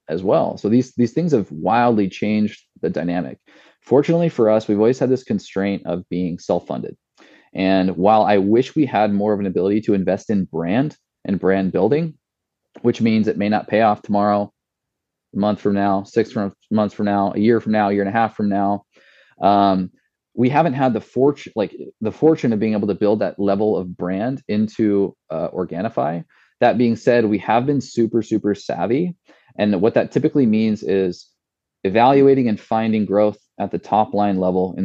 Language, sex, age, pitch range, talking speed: English, male, 20-39, 95-115 Hz, 195 wpm